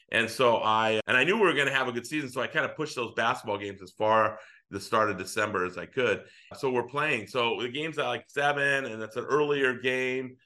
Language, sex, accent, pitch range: English, male, American, 105-130 Hz